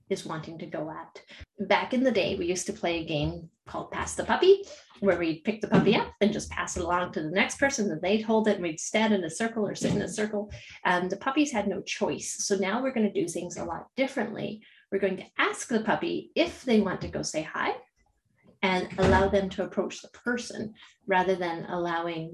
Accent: American